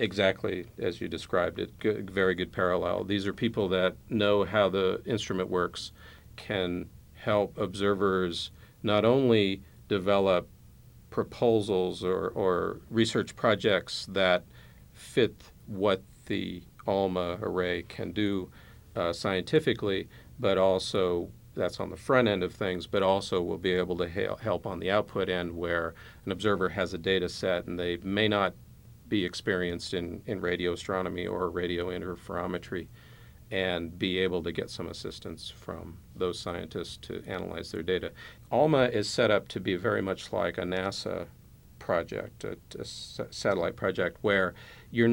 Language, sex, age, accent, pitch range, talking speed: English, male, 50-69, American, 90-105 Hz, 150 wpm